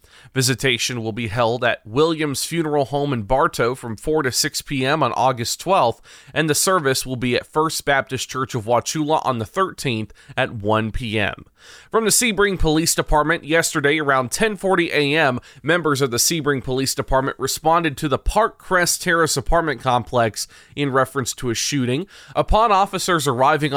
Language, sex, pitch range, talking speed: English, male, 125-155 Hz, 165 wpm